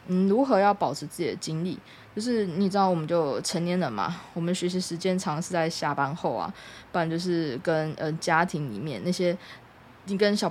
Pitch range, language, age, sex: 160-185 Hz, Chinese, 20-39, female